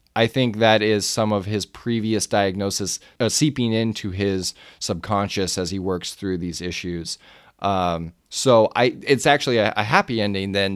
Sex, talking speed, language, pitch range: male, 165 wpm, English, 95-115 Hz